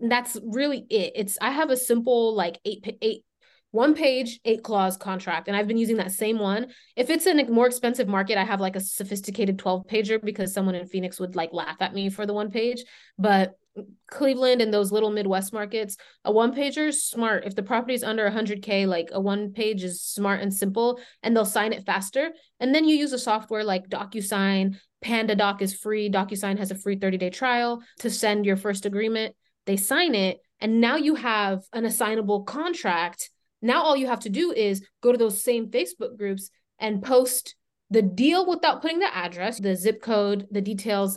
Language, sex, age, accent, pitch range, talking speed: English, female, 20-39, American, 200-245 Hz, 205 wpm